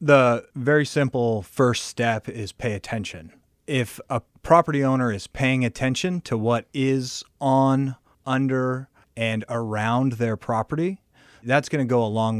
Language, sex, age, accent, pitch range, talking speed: English, male, 30-49, American, 110-140 Hz, 140 wpm